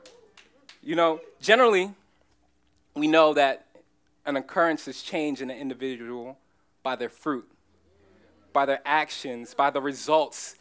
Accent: American